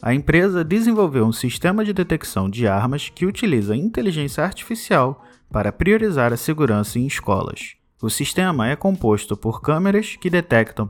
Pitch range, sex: 115-185 Hz, male